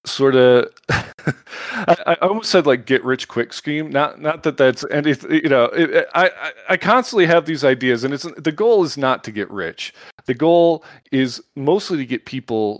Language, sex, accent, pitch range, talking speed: English, male, American, 105-145 Hz, 190 wpm